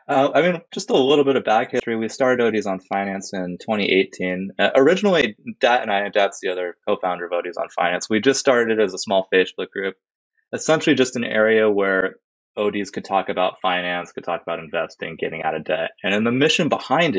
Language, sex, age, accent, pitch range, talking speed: English, male, 20-39, American, 90-115 Hz, 215 wpm